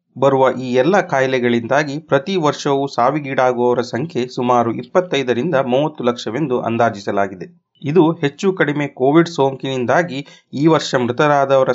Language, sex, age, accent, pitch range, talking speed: Kannada, male, 30-49, native, 125-160 Hz, 105 wpm